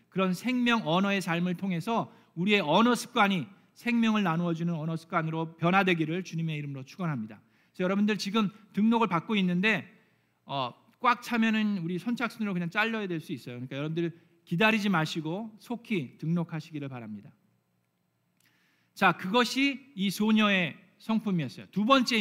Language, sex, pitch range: Korean, male, 160-210 Hz